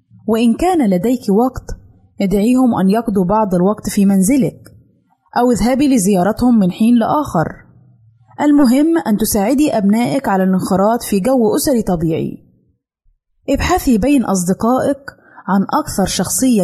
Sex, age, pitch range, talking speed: female, 20-39, 195-255 Hz, 120 wpm